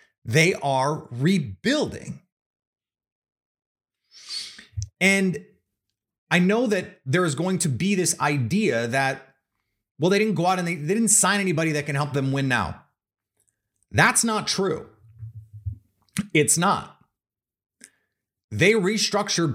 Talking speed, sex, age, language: 120 wpm, male, 30-49, English